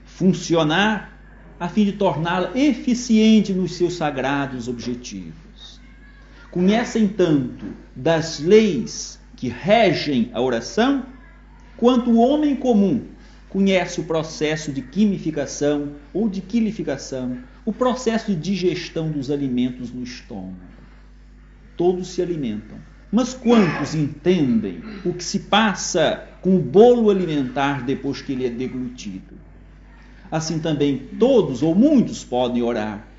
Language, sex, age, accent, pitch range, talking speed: Portuguese, male, 50-69, Brazilian, 140-225 Hz, 115 wpm